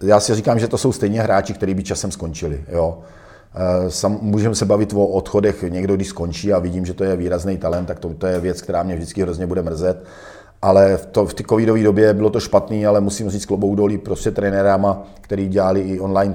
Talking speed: 225 wpm